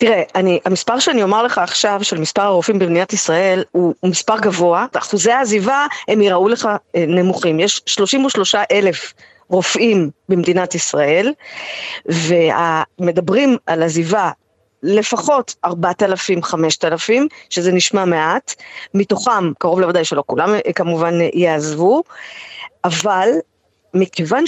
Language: Hebrew